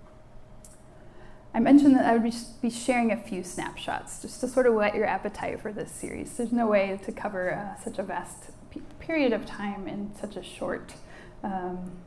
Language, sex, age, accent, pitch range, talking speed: English, female, 10-29, American, 215-265 Hz, 185 wpm